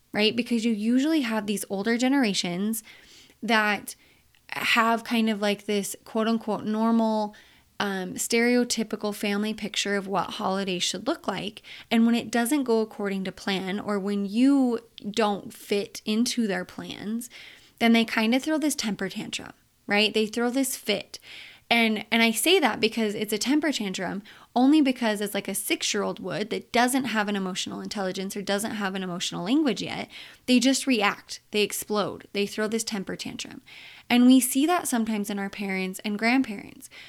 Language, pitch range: English, 200-245 Hz